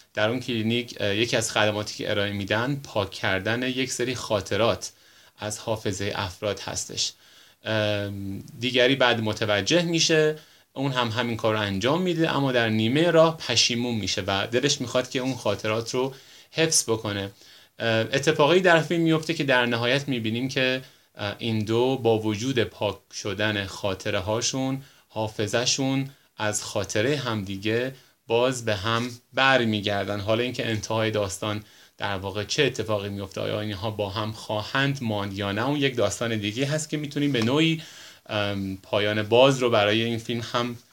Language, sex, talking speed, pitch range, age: Persian, male, 155 wpm, 105-130 Hz, 30-49